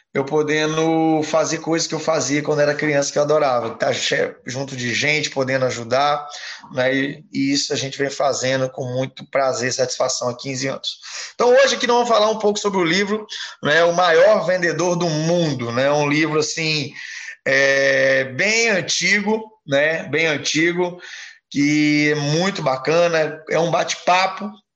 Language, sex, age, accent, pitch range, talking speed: Portuguese, male, 20-39, Brazilian, 145-190 Hz, 170 wpm